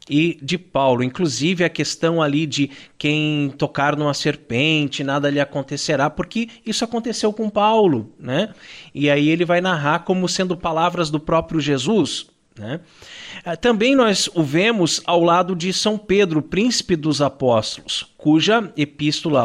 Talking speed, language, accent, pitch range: 145 wpm, Portuguese, Brazilian, 145-195 Hz